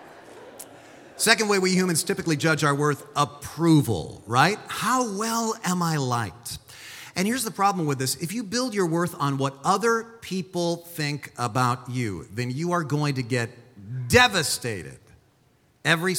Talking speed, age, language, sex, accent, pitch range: 150 wpm, 40-59, English, male, American, 115-160 Hz